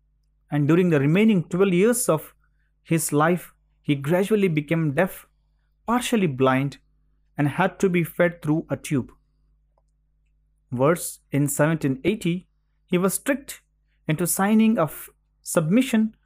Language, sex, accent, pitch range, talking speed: English, male, Indian, 145-195 Hz, 120 wpm